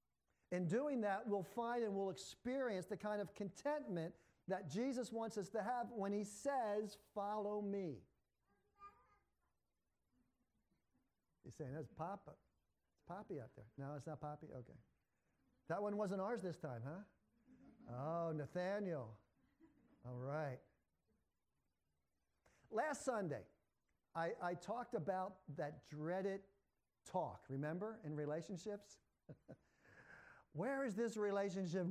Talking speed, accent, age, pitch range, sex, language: 120 wpm, American, 50-69, 160-215 Hz, male, English